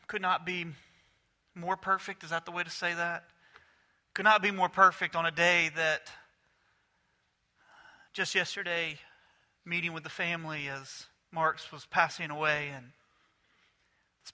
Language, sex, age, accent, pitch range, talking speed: English, male, 40-59, American, 160-185 Hz, 140 wpm